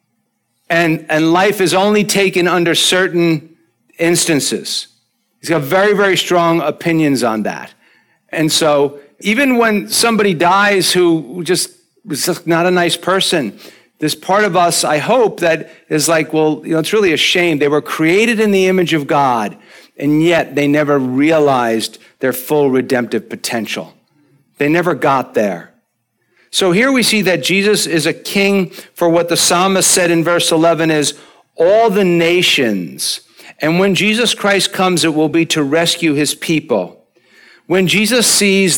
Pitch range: 155-195 Hz